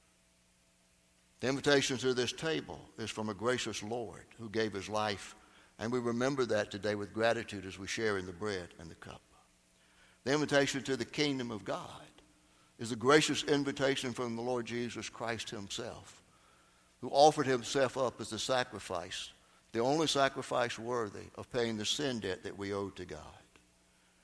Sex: male